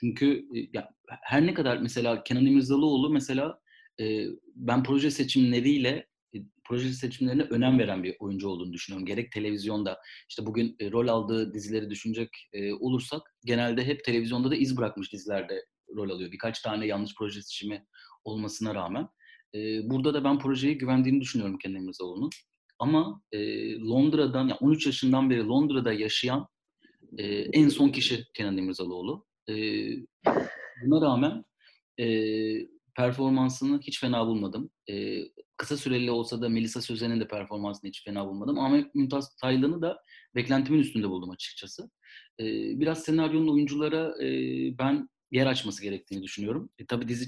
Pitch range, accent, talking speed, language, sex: 105-140 Hz, native, 135 wpm, Turkish, male